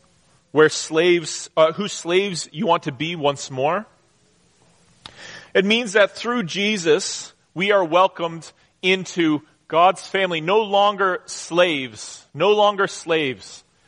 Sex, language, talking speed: male, English, 120 wpm